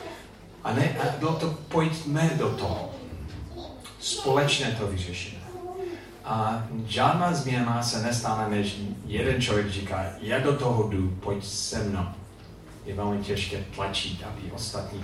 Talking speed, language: 130 wpm, Czech